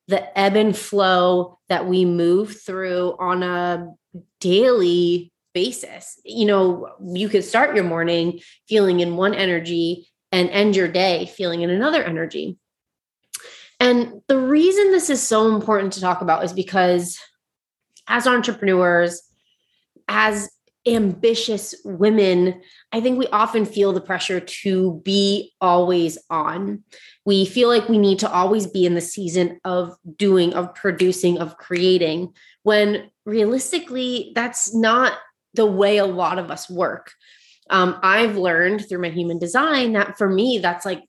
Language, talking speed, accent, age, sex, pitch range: English, 145 wpm, American, 20-39, female, 175-210 Hz